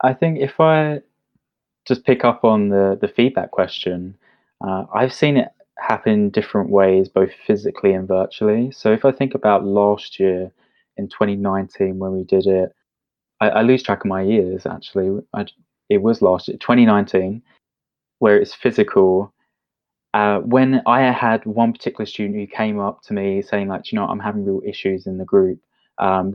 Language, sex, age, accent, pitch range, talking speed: English, male, 20-39, British, 95-120 Hz, 180 wpm